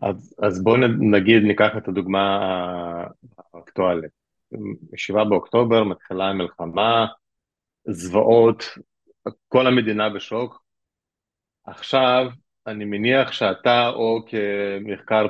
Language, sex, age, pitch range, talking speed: Hebrew, male, 30-49, 100-125 Hz, 85 wpm